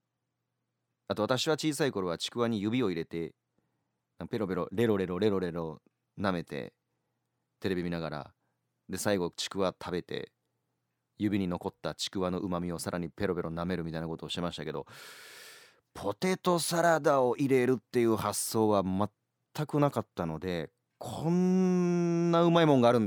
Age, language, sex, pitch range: 30-49, Japanese, male, 90-150 Hz